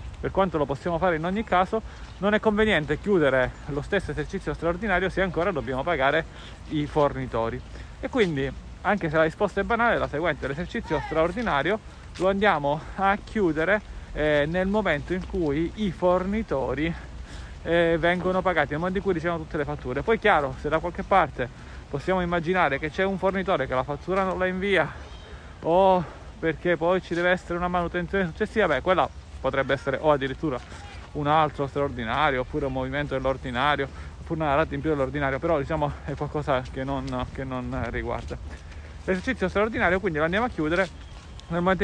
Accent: native